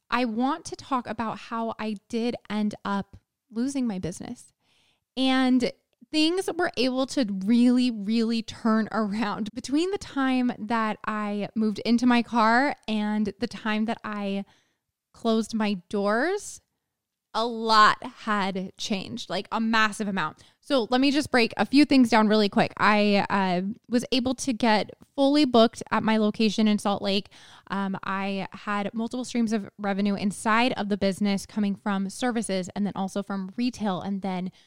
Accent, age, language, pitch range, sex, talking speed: American, 10-29, English, 205-250 Hz, female, 160 wpm